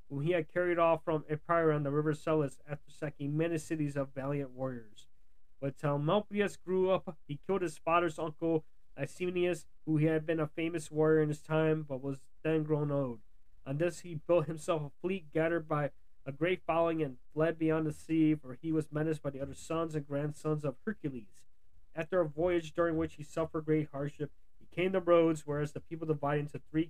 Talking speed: 200 wpm